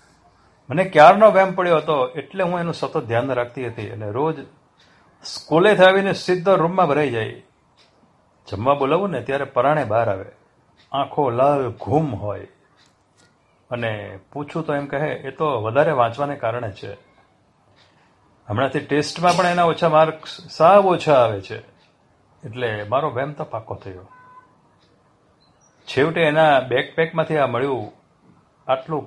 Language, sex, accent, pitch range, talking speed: Gujarati, male, native, 125-175 Hz, 130 wpm